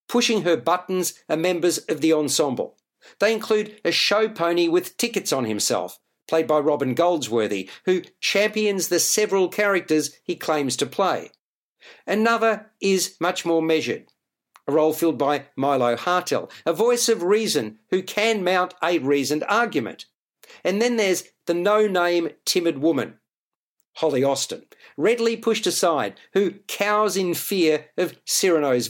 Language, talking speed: English, 145 wpm